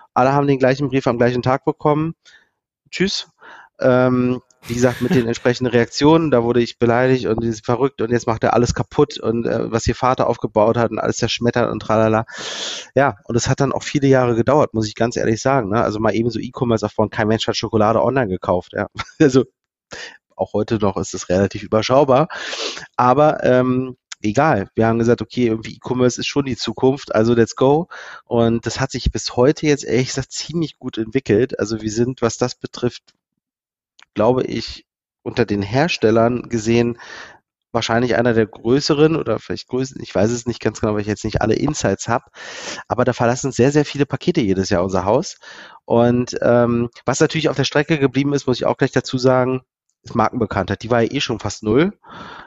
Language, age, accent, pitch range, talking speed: German, 30-49, German, 110-130 Hz, 200 wpm